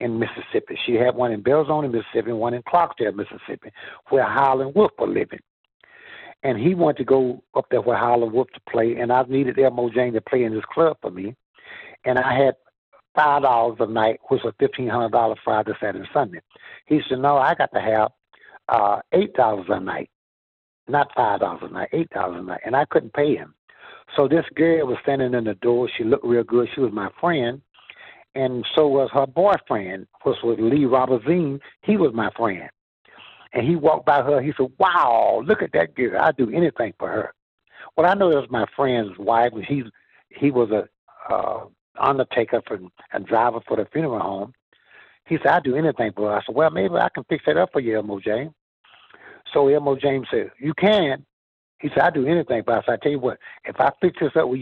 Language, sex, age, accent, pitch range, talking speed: English, male, 60-79, American, 115-140 Hz, 205 wpm